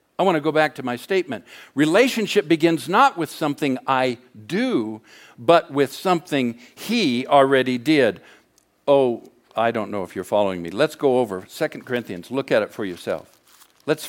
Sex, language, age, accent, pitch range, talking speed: male, English, 60-79, American, 120-175 Hz, 170 wpm